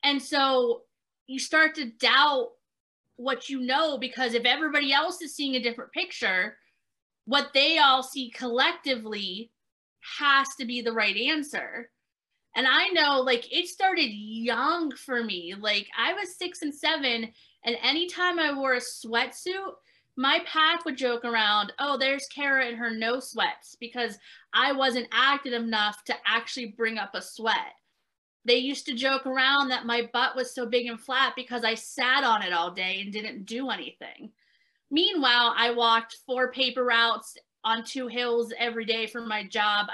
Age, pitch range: 20-39, 230-290 Hz